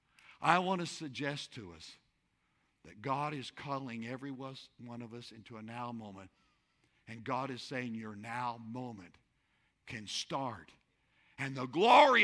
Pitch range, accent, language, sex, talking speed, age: 120-165 Hz, American, English, male, 145 wpm, 60-79